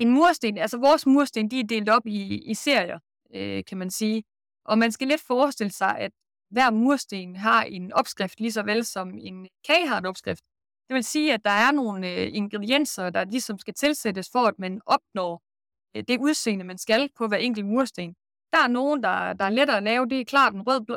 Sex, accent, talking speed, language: female, native, 215 wpm, Danish